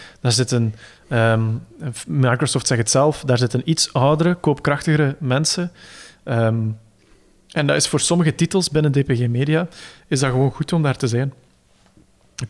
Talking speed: 155 wpm